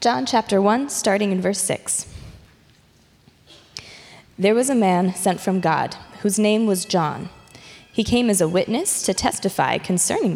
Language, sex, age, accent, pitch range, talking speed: English, female, 20-39, American, 175-225 Hz, 150 wpm